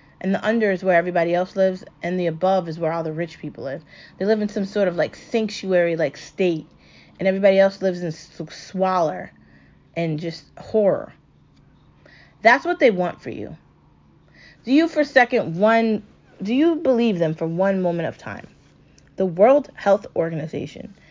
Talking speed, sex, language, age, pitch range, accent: 175 wpm, female, English, 30-49, 180-225 Hz, American